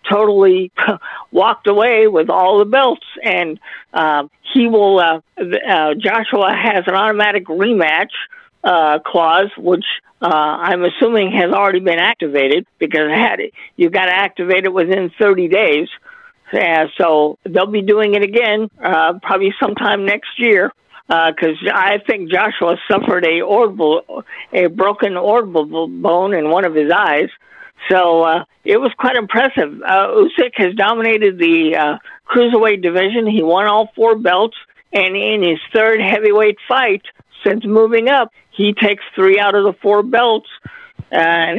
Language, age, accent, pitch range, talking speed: English, 50-69, American, 180-220 Hz, 155 wpm